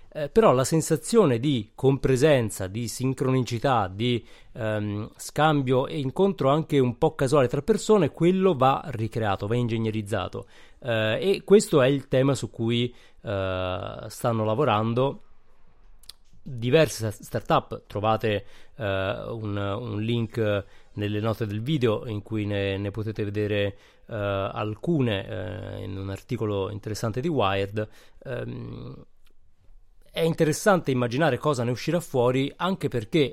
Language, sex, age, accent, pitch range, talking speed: Italian, male, 30-49, native, 105-135 Hz, 125 wpm